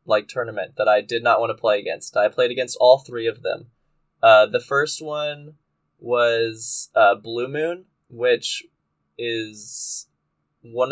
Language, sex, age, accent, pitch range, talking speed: English, male, 10-29, American, 105-155 Hz, 155 wpm